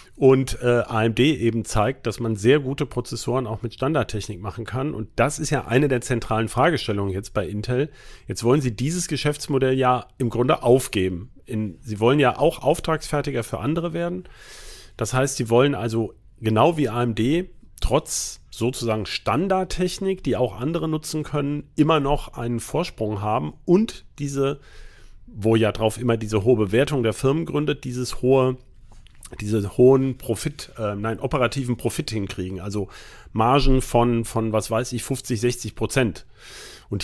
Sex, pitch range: male, 110-140 Hz